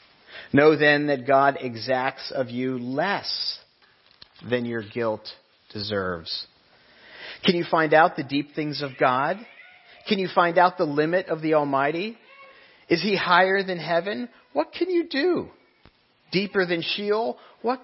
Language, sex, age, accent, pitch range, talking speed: English, male, 40-59, American, 125-180 Hz, 145 wpm